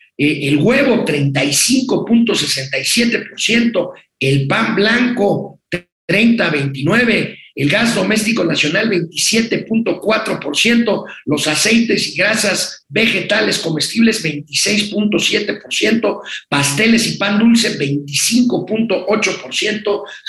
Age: 50-69